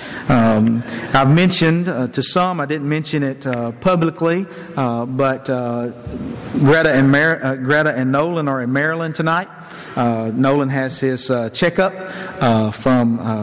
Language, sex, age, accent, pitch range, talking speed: English, male, 50-69, American, 125-175 Hz, 155 wpm